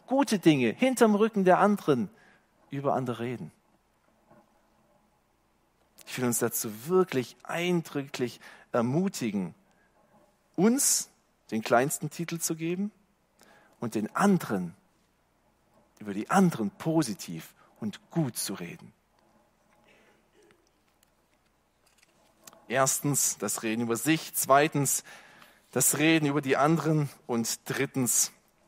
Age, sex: 40-59, male